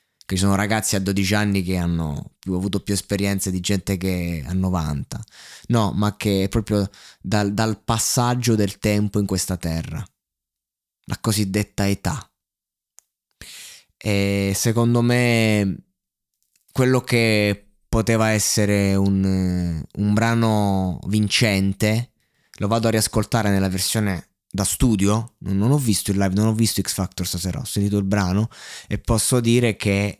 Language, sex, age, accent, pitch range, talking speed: Italian, male, 20-39, native, 95-115 Hz, 140 wpm